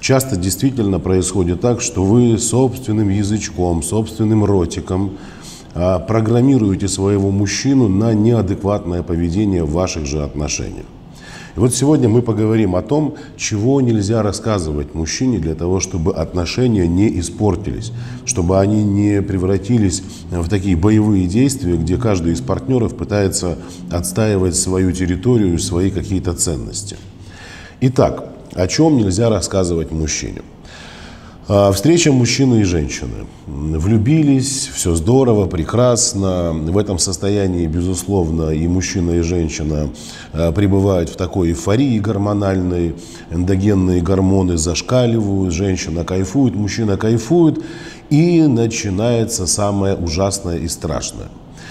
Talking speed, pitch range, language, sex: 110 wpm, 90-115 Hz, Russian, male